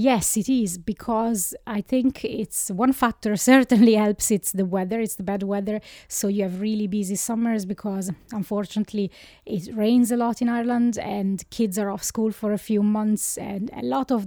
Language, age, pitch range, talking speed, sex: English, 20-39, 195-220 Hz, 190 wpm, female